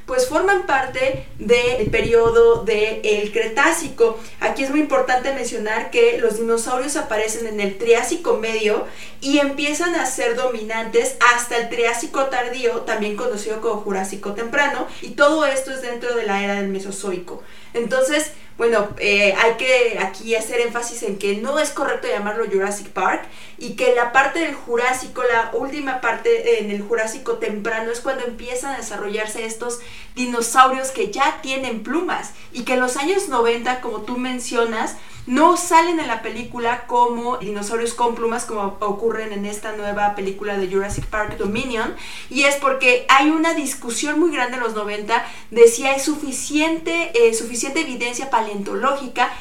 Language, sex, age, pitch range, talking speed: Spanish, female, 30-49, 225-295 Hz, 160 wpm